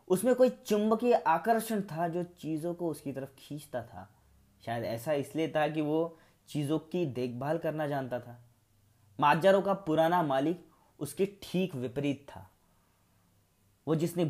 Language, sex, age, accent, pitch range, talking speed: Hindi, male, 20-39, native, 110-165 Hz, 145 wpm